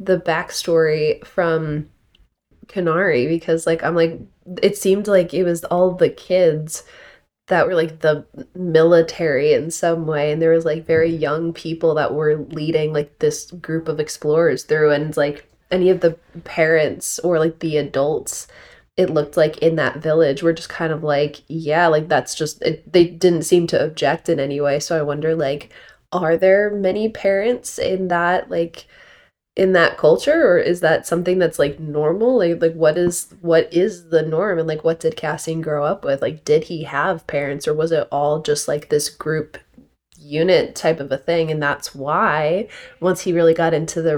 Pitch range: 155-175 Hz